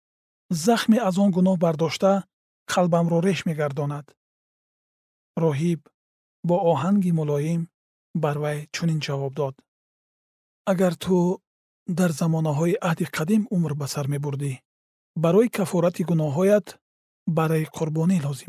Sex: male